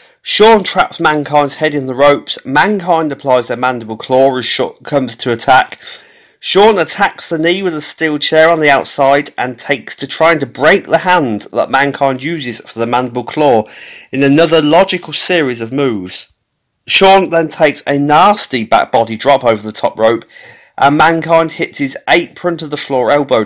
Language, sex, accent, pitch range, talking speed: English, male, British, 125-165 Hz, 180 wpm